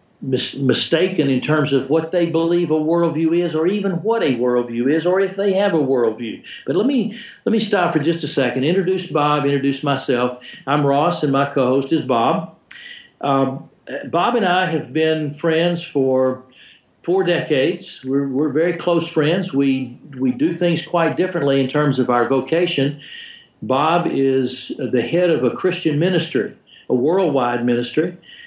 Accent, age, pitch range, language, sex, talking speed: American, 60-79, 130-165 Hz, English, male, 170 wpm